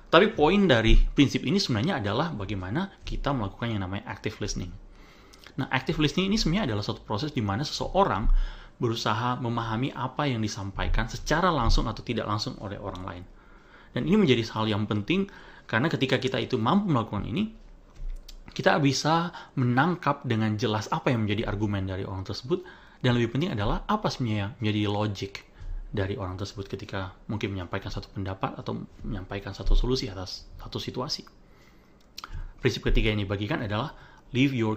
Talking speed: 160 wpm